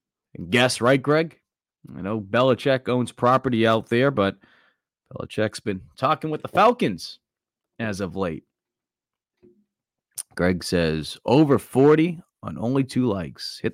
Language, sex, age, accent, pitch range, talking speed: English, male, 30-49, American, 105-130 Hz, 125 wpm